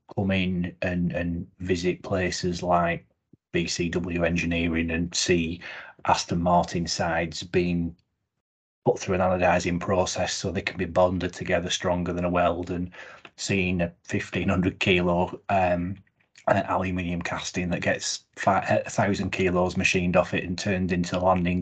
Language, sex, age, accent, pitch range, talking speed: English, male, 30-49, British, 90-100 Hz, 145 wpm